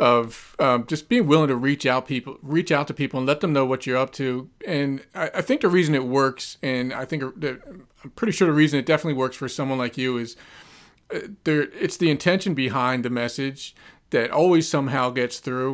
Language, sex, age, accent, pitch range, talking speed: English, male, 40-59, American, 125-145 Hz, 225 wpm